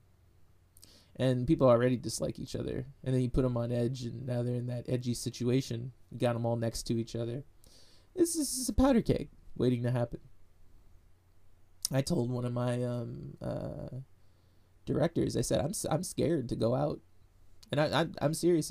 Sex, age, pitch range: male, 20-39, 95-125 Hz